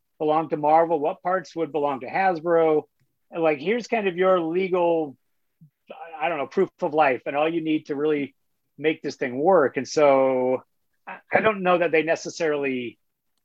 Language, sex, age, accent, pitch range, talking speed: English, male, 40-59, American, 135-165 Hz, 180 wpm